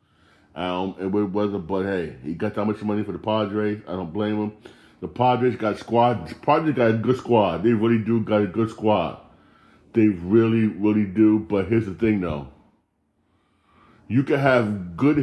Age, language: 40-59, English